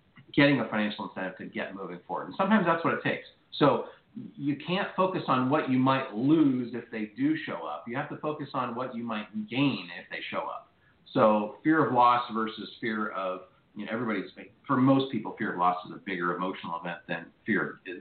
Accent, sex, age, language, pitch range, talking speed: American, male, 40-59, English, 110-150 Hz, 215 wpm